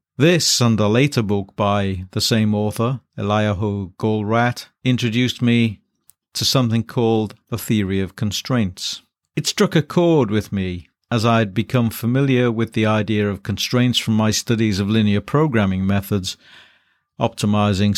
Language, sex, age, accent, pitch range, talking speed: English, male, 50-69, British, 100-120 Hz, 145 wpm